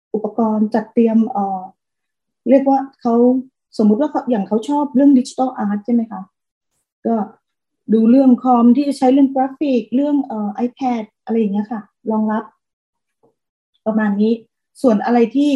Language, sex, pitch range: Thai, female, 210-255 Hz